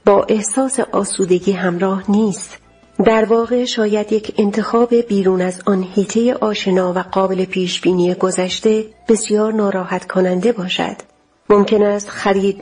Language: Persian